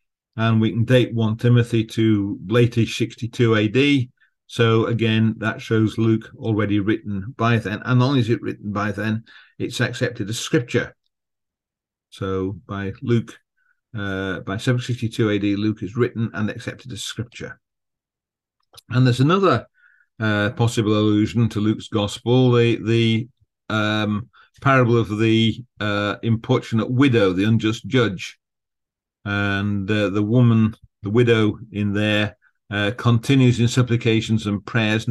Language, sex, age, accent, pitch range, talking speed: English, male, 50-69, British, 105-120 Hz, 135 wpm